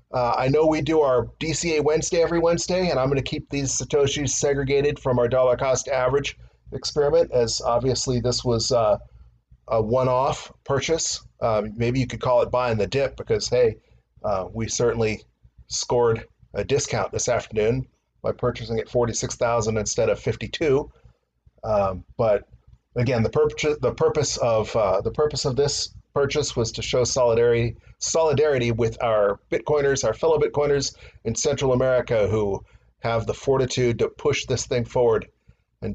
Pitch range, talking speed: 110-140 Hz, 160 wpm